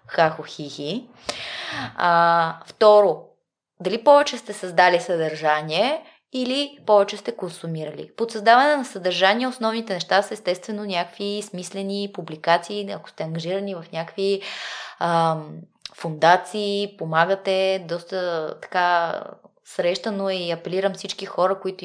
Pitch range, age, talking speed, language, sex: 175-240 Hz, 20-39, 105 wpm, Bulgarian, female